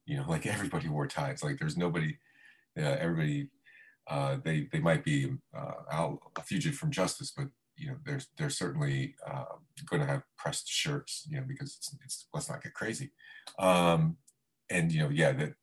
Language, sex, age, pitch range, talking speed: English, male, 40-59, 120-150 Hz, 190 wpm